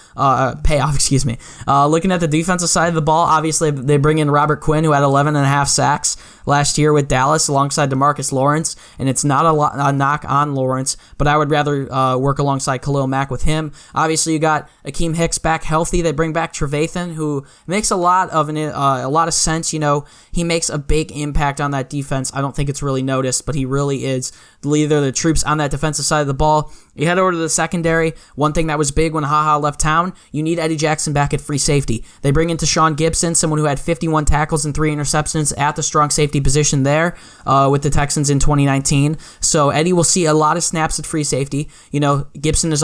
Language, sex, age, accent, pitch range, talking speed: English, male, 10-29, American, 140-155 Hz, 240 wpm